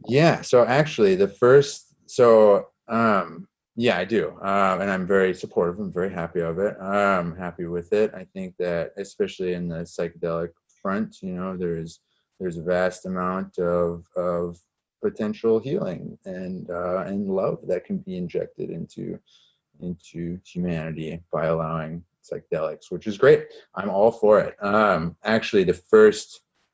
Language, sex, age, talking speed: English, male, 30-49, 155 wpm